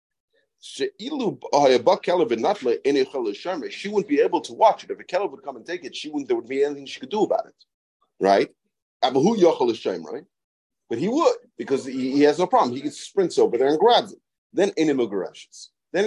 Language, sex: English, male